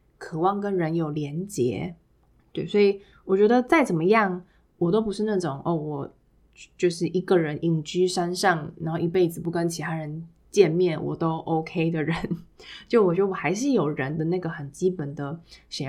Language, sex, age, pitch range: Chinese, female, 20-39, 160-195 Hz